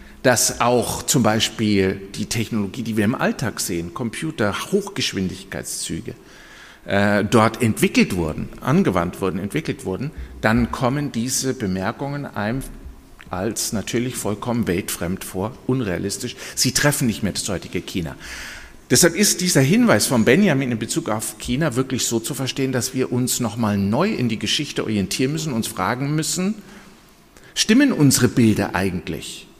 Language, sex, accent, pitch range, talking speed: German, male, German, 105-145 Hz, 140 wpm